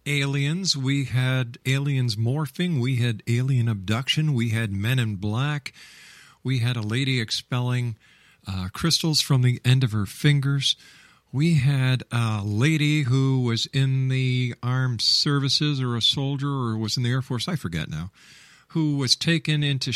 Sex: male